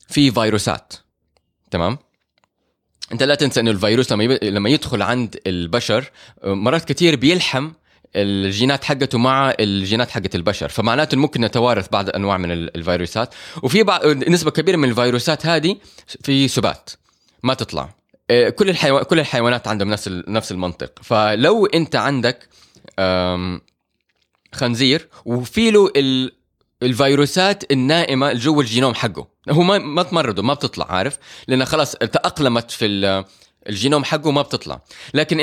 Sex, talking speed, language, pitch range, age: male, 130 wpm, Arabic, 105-150 Hz, 20-39